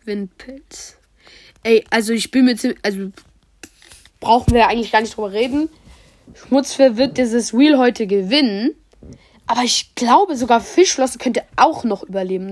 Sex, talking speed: female, 145 wpm